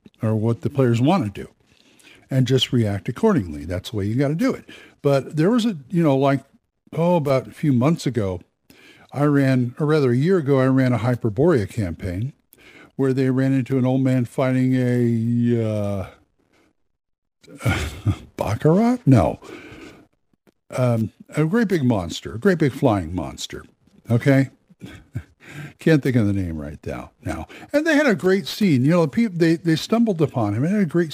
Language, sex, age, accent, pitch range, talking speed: English, male, 60-79, American, 115-150 Hz, 185 wpm